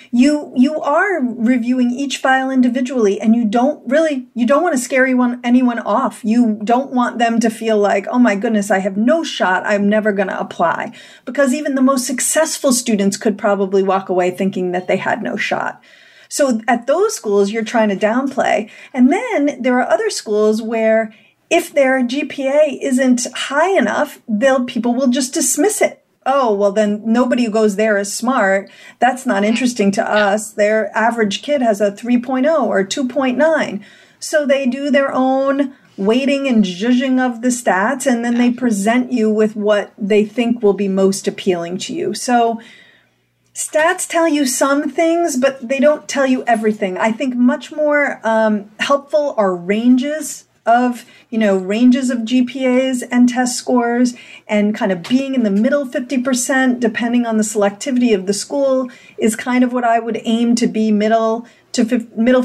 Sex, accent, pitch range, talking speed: female, American, 210-270 Hz, 175 wpm